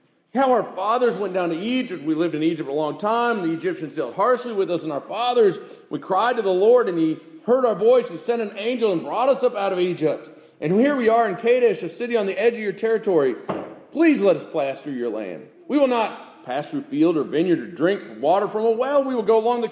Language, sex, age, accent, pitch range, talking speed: English, male, 40-59, American, 200-275 Hz, 260 wpm